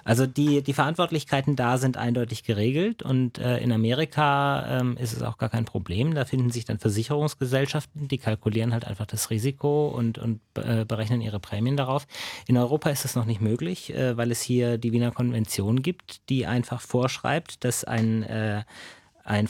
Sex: male